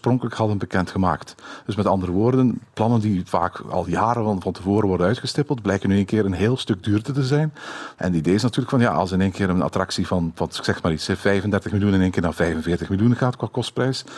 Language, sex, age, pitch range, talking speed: Dutch, male, 50-69, 95-120 Hz, 235 wpm